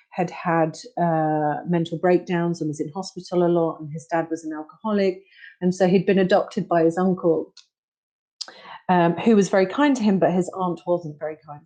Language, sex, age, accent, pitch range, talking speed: English, female, 30-49, British, 165-215 Hz, 195 wpm